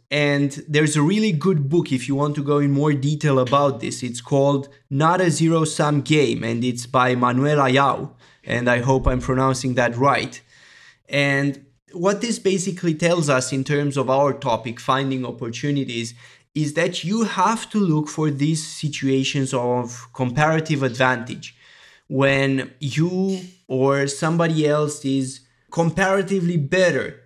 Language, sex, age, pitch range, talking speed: English, male, 20-39, 135-165 Hz, 150 wpm